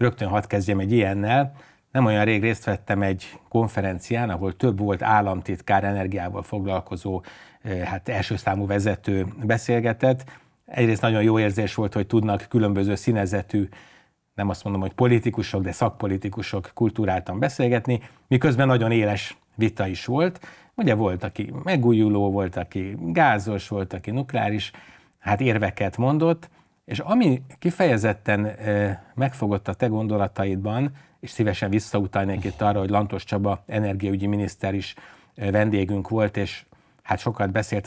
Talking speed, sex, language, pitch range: 130 wpm, male, Hungarian, 100-120 Hz